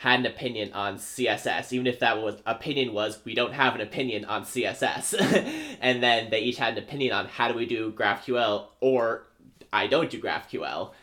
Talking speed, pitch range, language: 195 wpm, 105-130 Hz, English